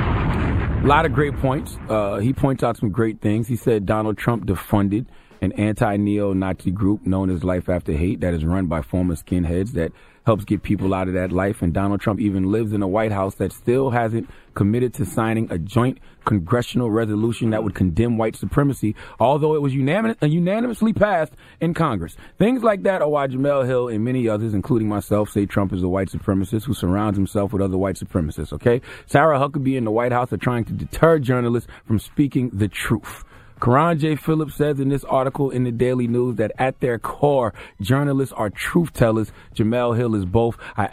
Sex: male